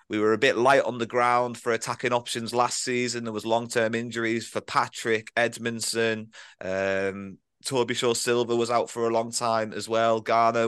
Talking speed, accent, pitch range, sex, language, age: 185 wpm, British, 110-135 Hz, male, English, 20-39